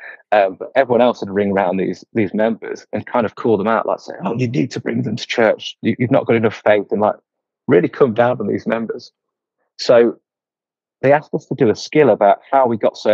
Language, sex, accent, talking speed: English, male, British, 240 wpm